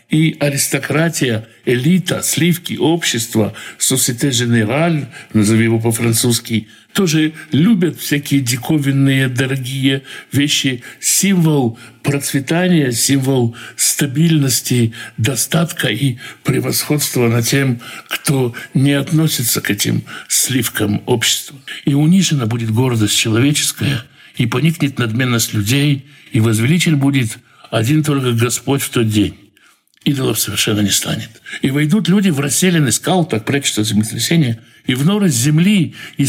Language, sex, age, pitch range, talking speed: Russian, male, 60-79, 115-150 Hz, 110 wpm